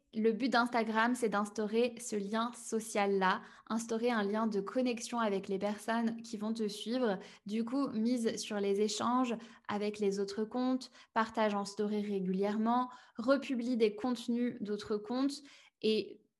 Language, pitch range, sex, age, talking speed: French, 205-235 Hz, female, 20-39, 145 wpm